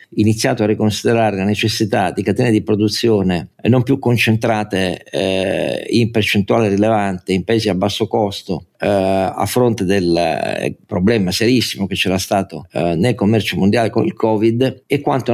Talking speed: 155 wpm